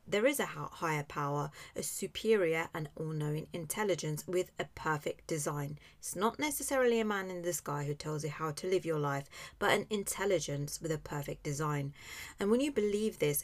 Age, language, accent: 30-49, English, British